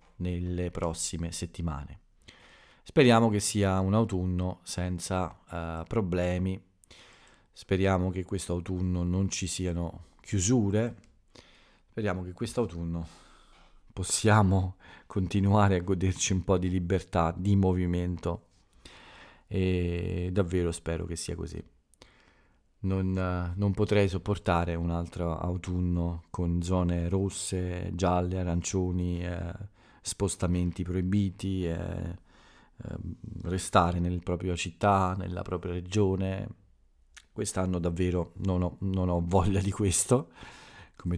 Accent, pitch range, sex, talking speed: native, 85-95 Hz, male, 105 wpm